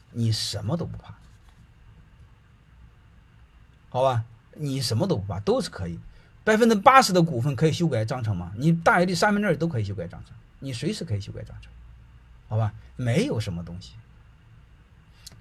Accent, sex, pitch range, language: native, male, 110-160 Hz, Chinese